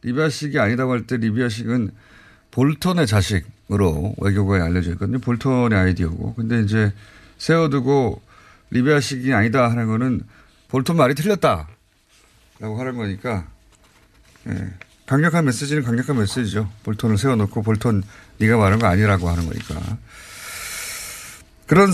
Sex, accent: male, native